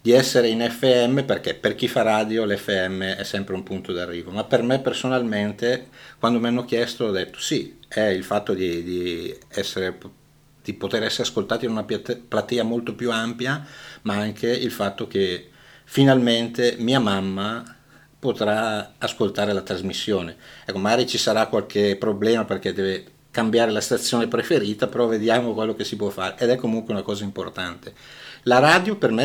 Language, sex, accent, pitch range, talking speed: Italian, male, native, 100-125 Hz, 170 wpm